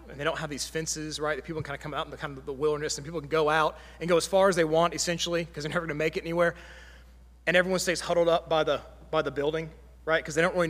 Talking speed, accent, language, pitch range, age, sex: 315 wpm, American, English, 110-165 Hz, 30-49, male